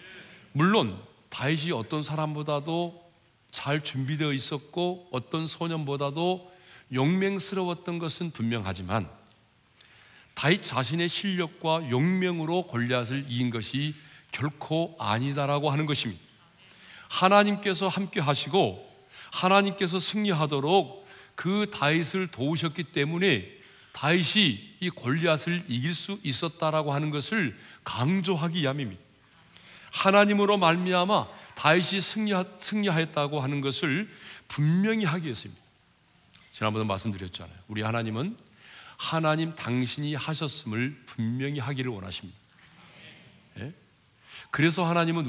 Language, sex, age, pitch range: Korean, male, 40-59, 125-175 Hz